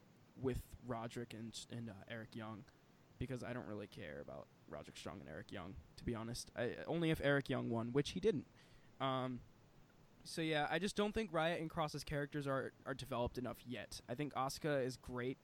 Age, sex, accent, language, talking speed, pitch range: 20-39, male, American, English, 200 wpm, 120-150 Hz